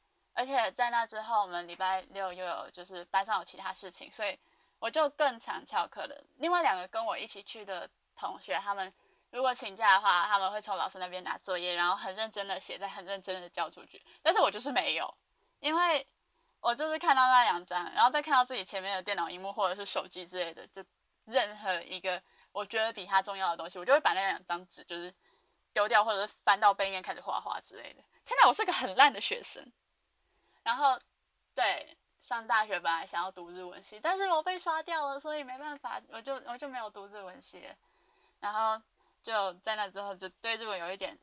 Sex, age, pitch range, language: female, 10-29, 190-270 Hz, Chinese